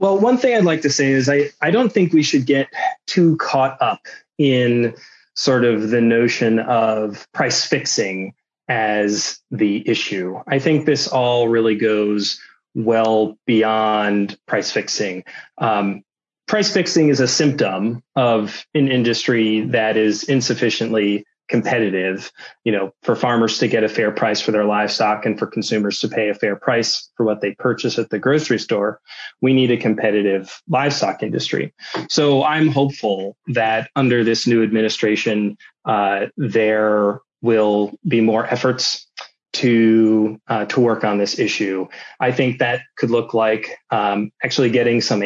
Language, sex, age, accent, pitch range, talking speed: English, male, 20-39, American, 105-135 Hz, 155 wpm